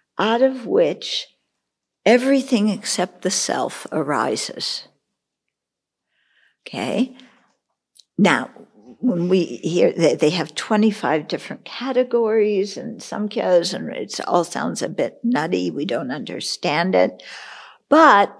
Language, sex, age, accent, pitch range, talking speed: English, female, 60-79, American, 165-230 Hz, 110 wpm